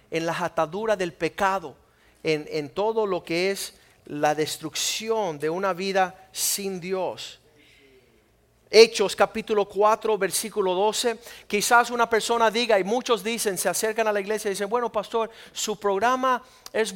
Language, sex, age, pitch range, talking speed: Spanish, male, 50-69, 190-240 Hz, 150 wpm